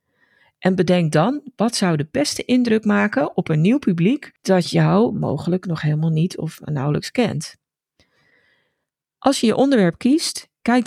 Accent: Dutch